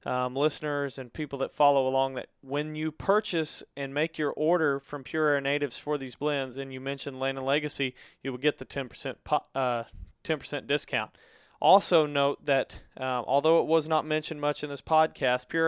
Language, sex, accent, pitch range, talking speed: English, male, American, 135-155 Hz, 195 wpm